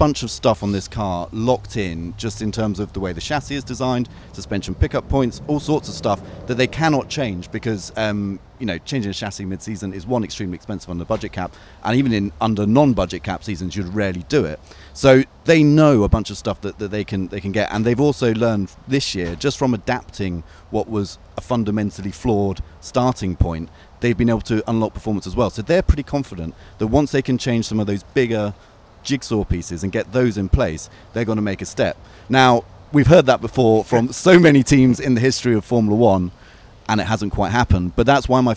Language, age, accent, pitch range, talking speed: English, 30-49, British, 95-125 Hz, 225 wpm